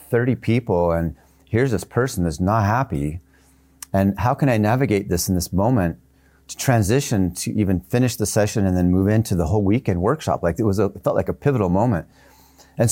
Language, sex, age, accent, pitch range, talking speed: English, male, 40-59, American, 80-105 Hz, 200 wpm